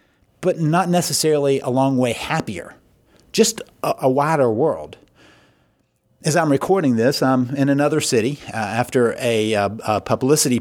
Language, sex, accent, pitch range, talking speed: English, male, American, 115-145 Hz, 140 wpm